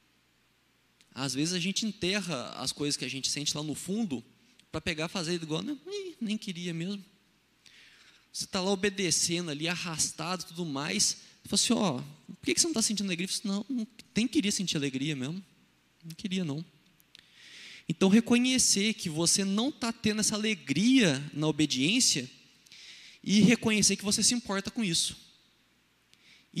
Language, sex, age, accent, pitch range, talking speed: Portuguese, male, 20-39, Brazilian, 145-210 Hz, 175 wpm